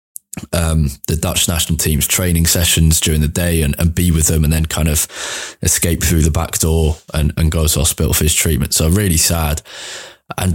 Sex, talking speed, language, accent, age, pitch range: male, 205 wpm, English, British, 20-39, 80-90 Hz